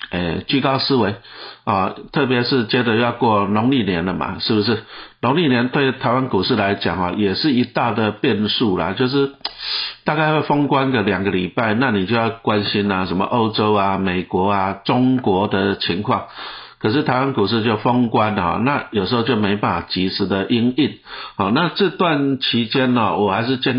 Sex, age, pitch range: male, 60-79, 100-130 Hz